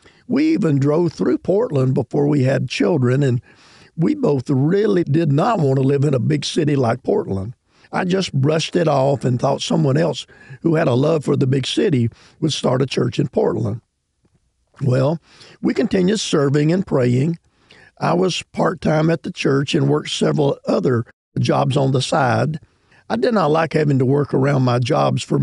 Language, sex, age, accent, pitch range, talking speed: English, male, 50-69, American, 130-160 Hz, 185 wpm